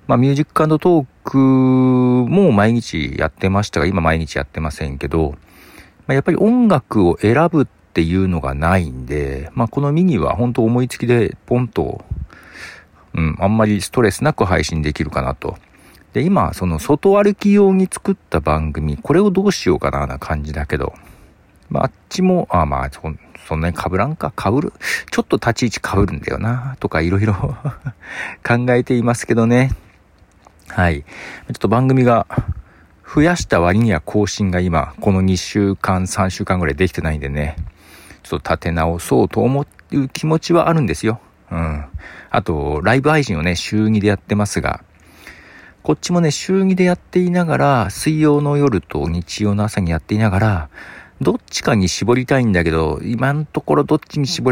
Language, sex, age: Japanese, male, 50-69